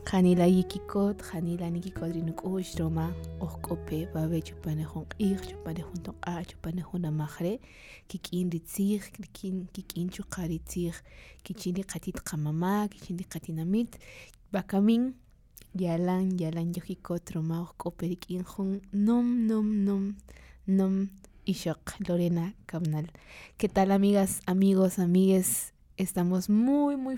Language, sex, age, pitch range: Spanish, female, 20-39, 165-195 Hz